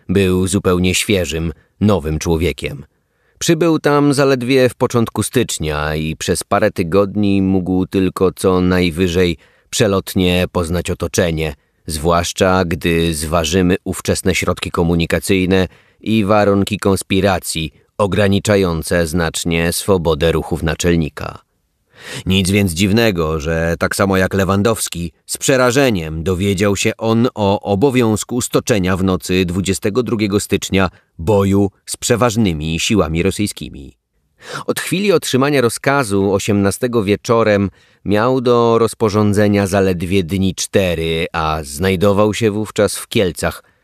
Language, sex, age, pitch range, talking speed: Polish, male, 30-49, 85-105 Hz, 110 wpm